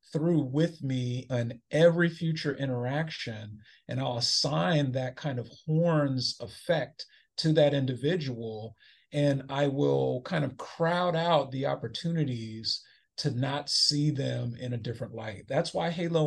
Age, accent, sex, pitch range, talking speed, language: 40-59, American, male, 120-150 Hz, 140 wpm, English